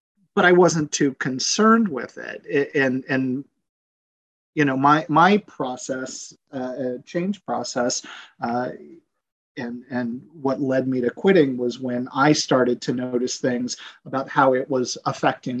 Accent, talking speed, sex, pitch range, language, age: American, 145 wpm, male, 125-150 Hz, English, 40-59